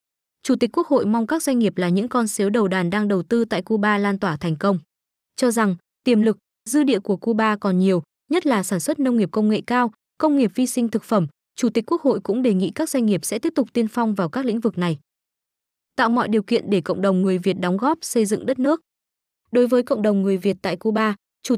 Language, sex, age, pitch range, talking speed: Vietnamese, female, 20-39, 195-245 Hz, 255 wpm